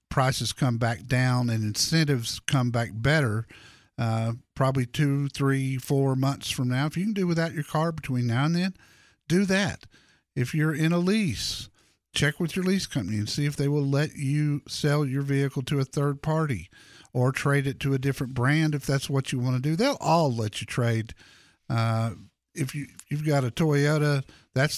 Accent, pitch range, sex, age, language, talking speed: American, 125-155 Hz, male, 50-69, English, 200 wpm